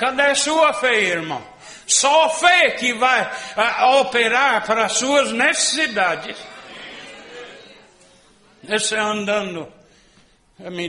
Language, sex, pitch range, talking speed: Portuguese, male, 175-250 Hz, 90 wpm